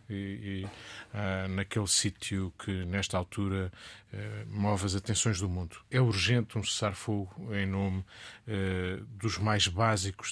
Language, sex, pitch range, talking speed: Portuguese, male, 95-110 Hz, 145 wpm